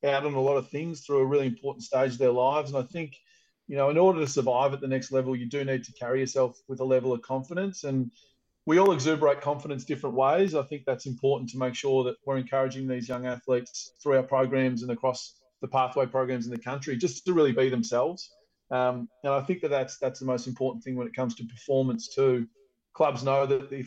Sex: male